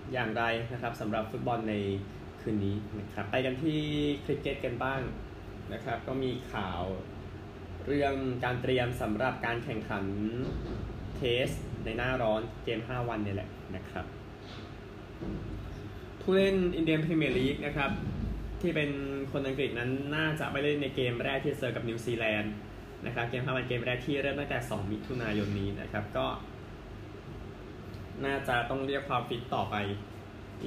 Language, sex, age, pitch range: Thai, male, 20-39, 105-130 Hz